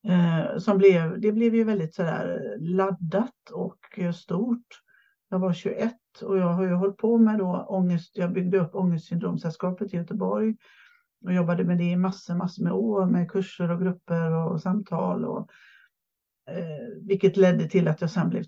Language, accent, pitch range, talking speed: Swedish, native, 175-210 Hz, 145 wpm